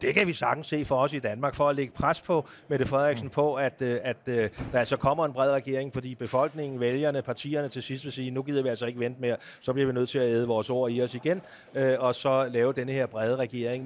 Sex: male